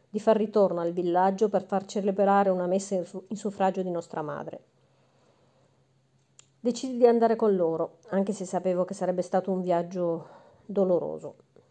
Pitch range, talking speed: 175-210 Hz, 160 wpm